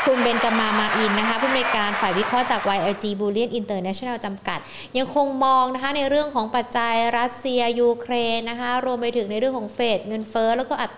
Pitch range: 205-255 Hz